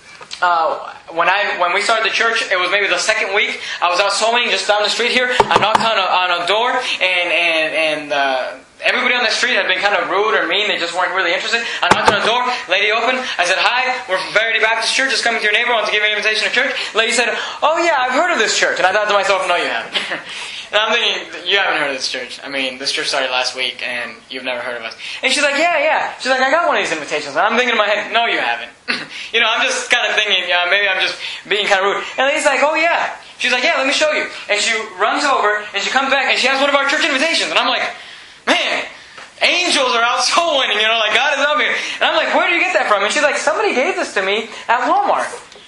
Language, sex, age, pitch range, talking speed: English, male, 10-29, 200-265 Hz, 280 wpm